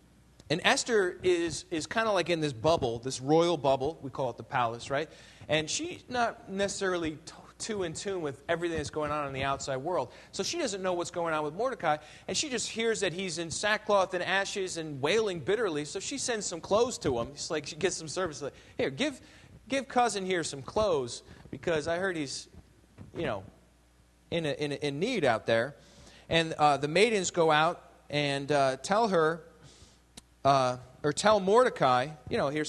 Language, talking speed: English, 200 wpm